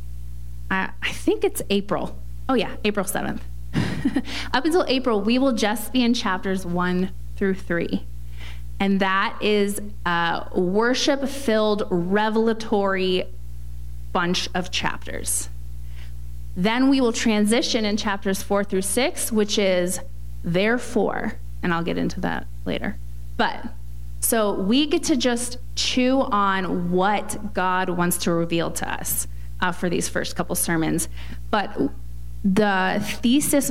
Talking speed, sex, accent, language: 125 wpm, female, American, English